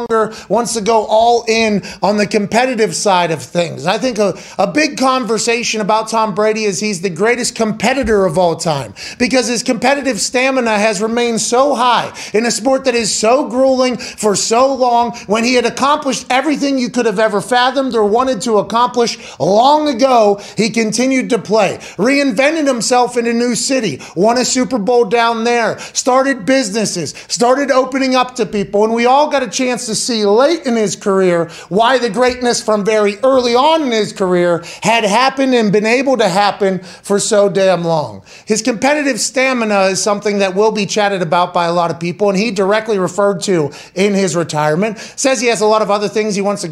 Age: 30-49